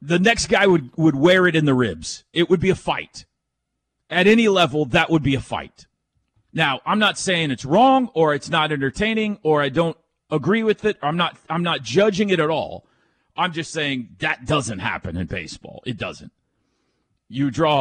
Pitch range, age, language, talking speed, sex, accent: 145-215 Hz, 40-59, English, 200 wpm, male, American